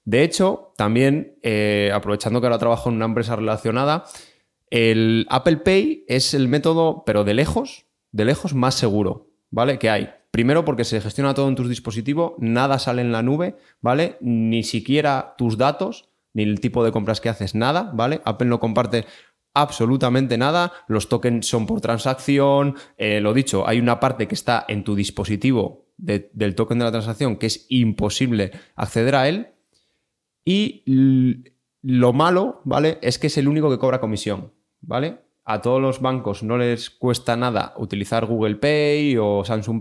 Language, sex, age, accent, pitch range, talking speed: Spanish, male, 20-39, Spanish, 110-140 Hz, 170 wpm